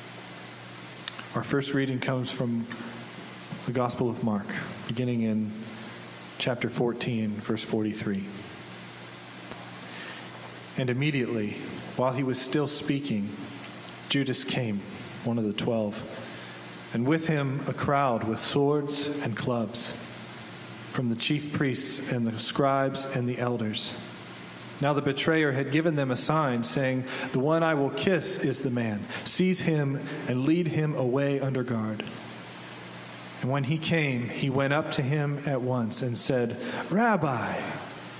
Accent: American